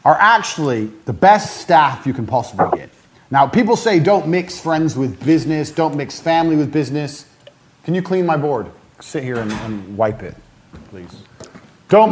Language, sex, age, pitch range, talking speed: English, male, 30-49, 140-200 Hz, 175 wpm